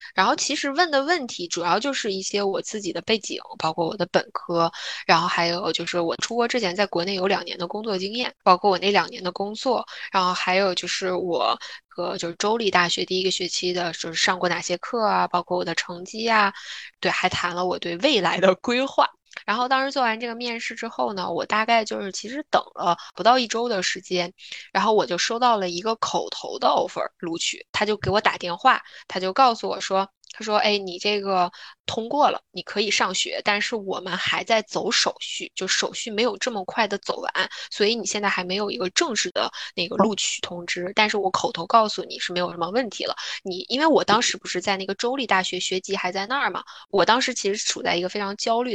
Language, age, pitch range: Chinese, 20-39, 180-230 Hz